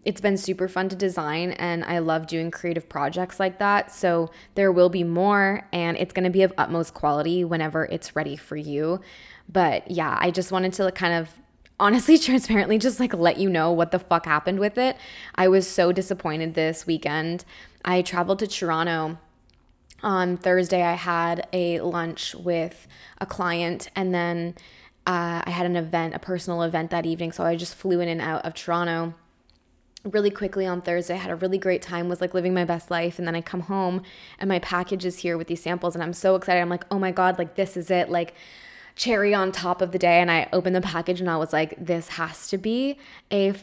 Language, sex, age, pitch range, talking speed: English, female, 10-29, 170-190 Hz, 215 wpm